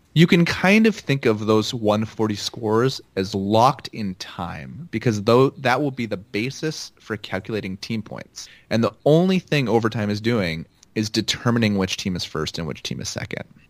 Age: 30-49